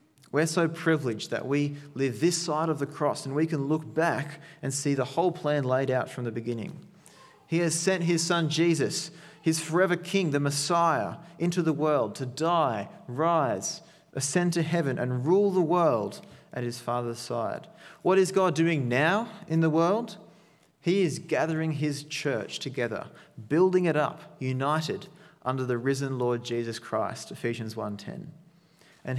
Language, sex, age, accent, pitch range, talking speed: English, male, 30-49, Australian, 135-170 Hz, 165 wpm